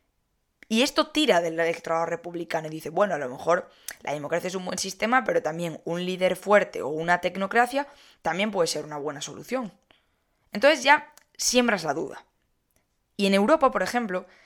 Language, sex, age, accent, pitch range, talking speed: Spanish, female, 10-29, Spanish, 165-230 Hz, 175 wpm